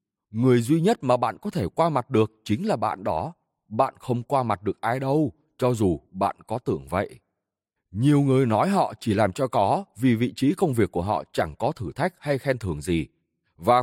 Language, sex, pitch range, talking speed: Vietnamese, male, 105-160 Hz, 220 wpm